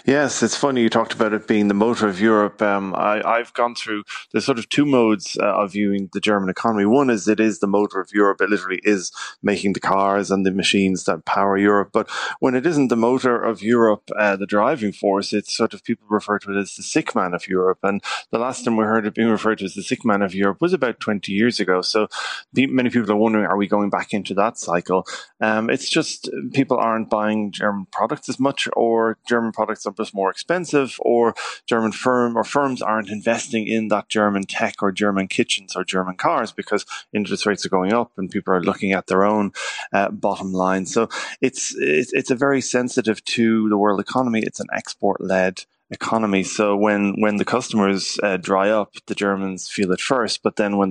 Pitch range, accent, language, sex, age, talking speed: 100-115 Hz, Irish, English, male, 20-39, 220 wpm